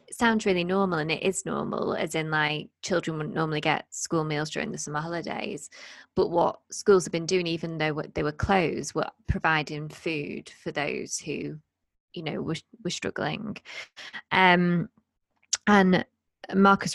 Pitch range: 160-190 Hz